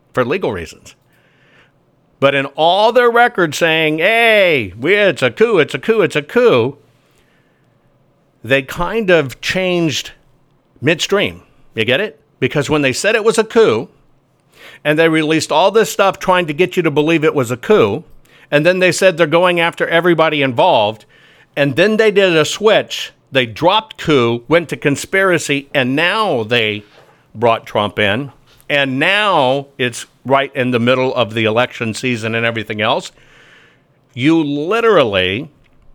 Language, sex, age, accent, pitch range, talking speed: English, male, 60-79, American, 135-175 Hz, 155 wpm